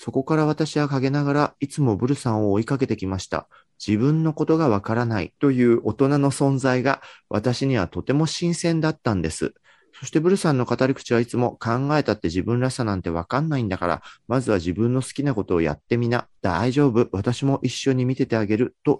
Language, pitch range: Japanese, 105-135 Hz